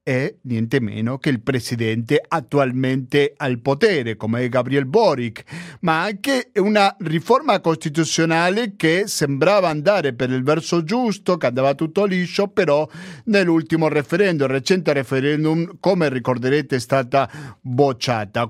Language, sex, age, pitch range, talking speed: Italian, male, 50-69, 135-180 Hz, 130 wpm